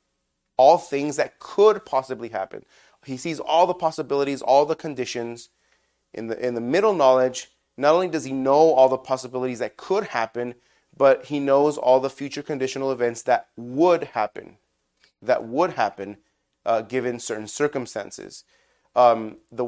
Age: 30-49